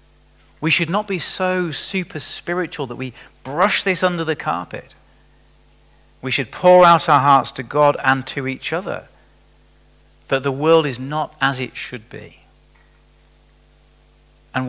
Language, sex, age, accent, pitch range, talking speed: English, male, 40-59, British, 135-170 Hz, 145 wpm